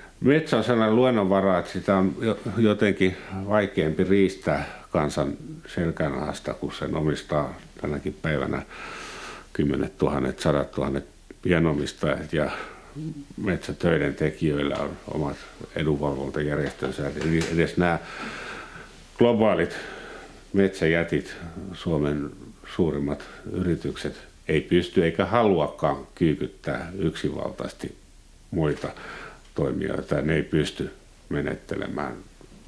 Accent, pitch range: native, 75-95 Hz